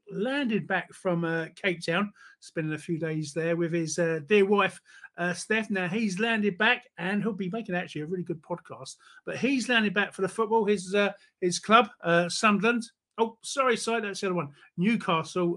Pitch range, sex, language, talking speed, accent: 155-205 Hz, male, English, 200 wpm, British